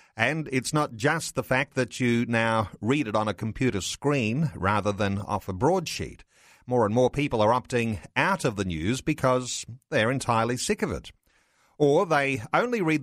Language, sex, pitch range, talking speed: English, male, 115-145 Hz, 185 wpm